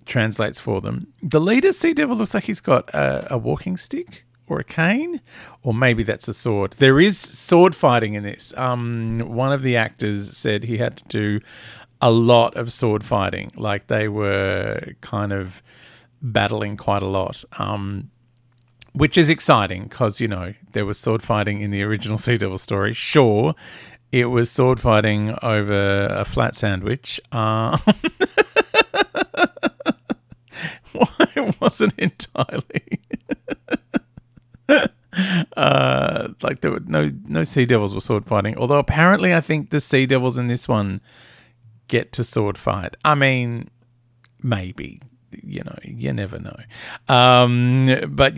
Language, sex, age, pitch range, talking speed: English, male, 40-59, 105-140 Hz, 145 wpm